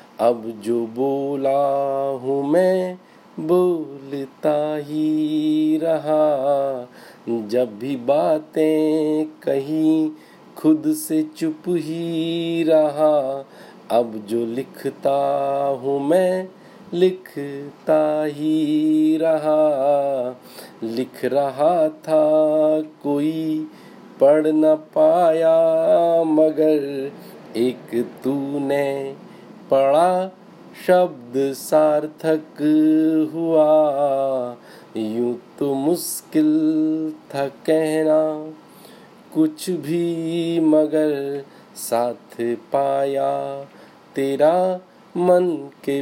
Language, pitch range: Hindi, 140-165 Hz